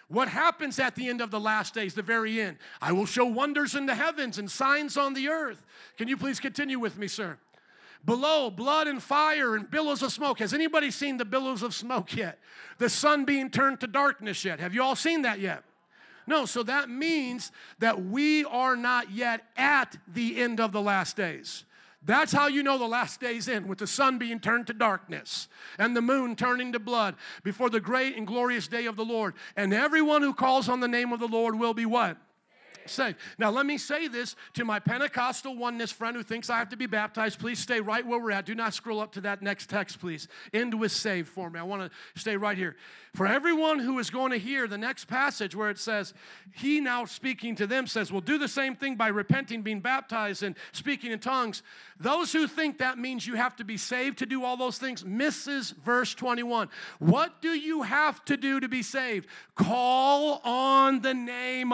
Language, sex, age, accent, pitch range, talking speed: English, male, 50-69, American, 220-270 Hz, 220 wpm